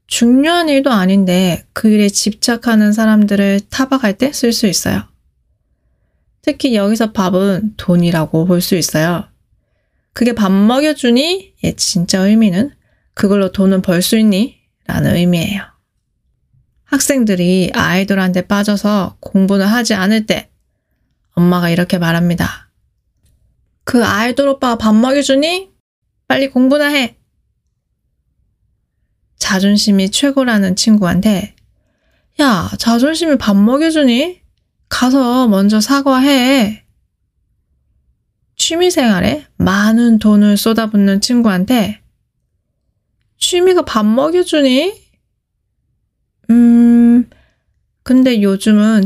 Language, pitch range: Korean, 190-255 Hz